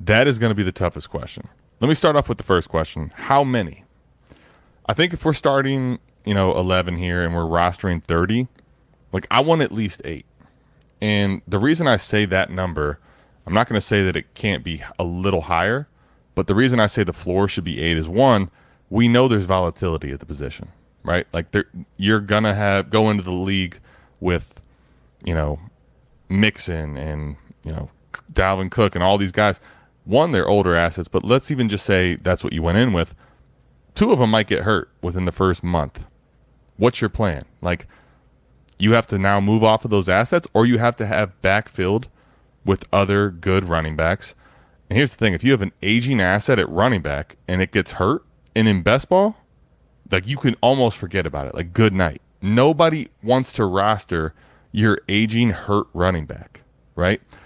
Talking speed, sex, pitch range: 195 wpm, male, 85-115 Hz